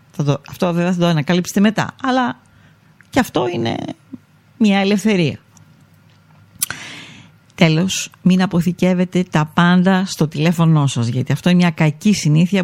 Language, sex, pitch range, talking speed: Greek, female, 145-185 Hz, 135 wpm